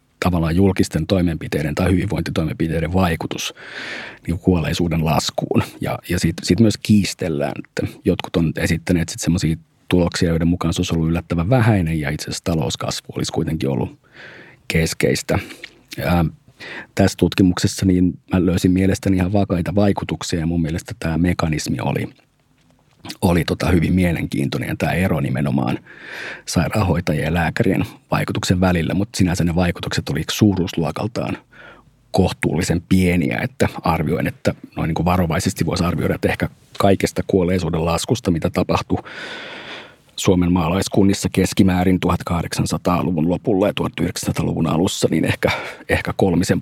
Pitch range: 85-100 Hz